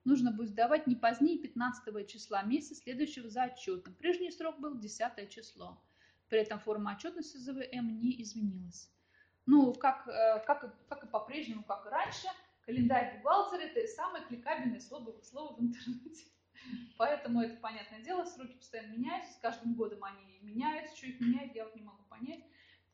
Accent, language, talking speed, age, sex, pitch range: native, Russian, 160 wpm, 20-39, female, 215-275 Hz